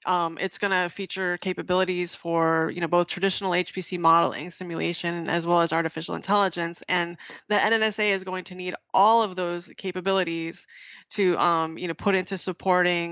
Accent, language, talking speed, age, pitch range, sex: American, English, 175 wpm, 20-39, 170-185 Hz, female